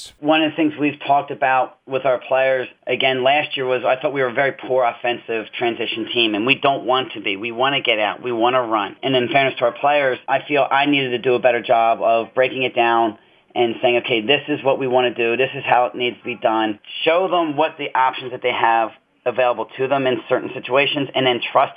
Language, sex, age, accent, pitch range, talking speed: English, male, 30-49, American, 120-140 Hz, 255 wpm